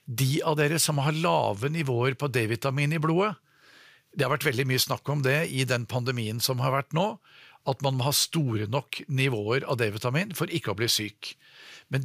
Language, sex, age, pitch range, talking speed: English, male, 50-69, 125-155 Hz, 200 wpm